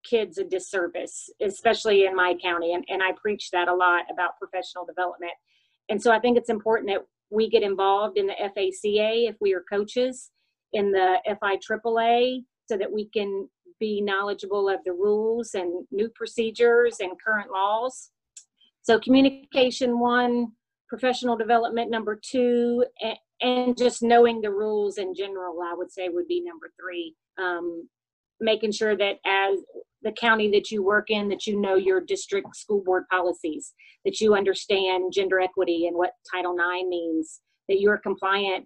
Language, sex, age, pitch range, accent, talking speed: English, female, 40-59, 185-230 Hz, American, 160 wpm